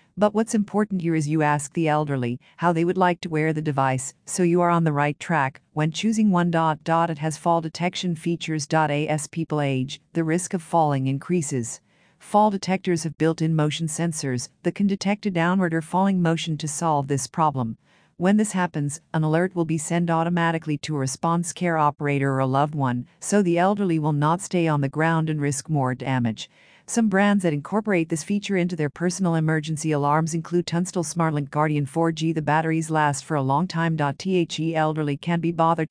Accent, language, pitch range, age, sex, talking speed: American, English, 150-175 Hz, 50-69, female, 195 wpm